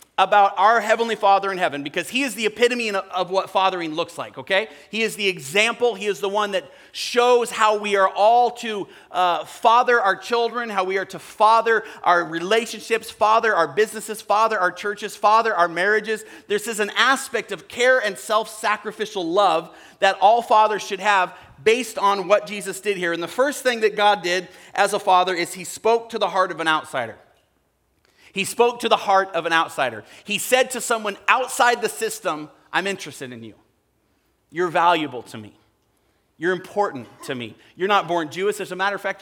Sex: male